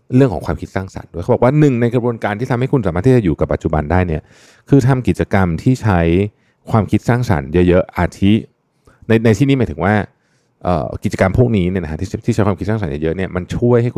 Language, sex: Thai, male